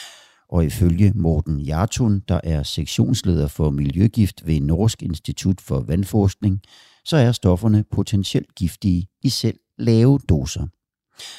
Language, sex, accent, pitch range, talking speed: Danish, male, native, 80-110 Hz, 120 wpm